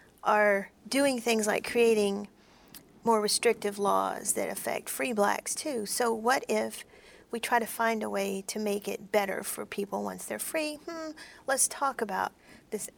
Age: 40-59